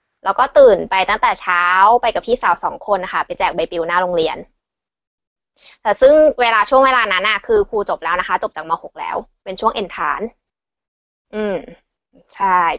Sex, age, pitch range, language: female, 20-39, 195-255 Hz, Thai